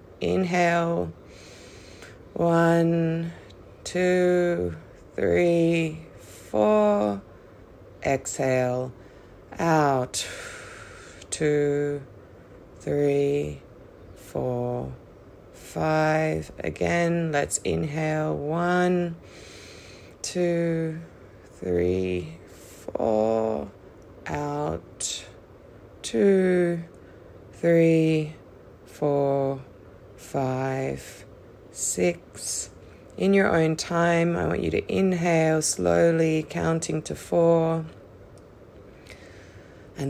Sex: female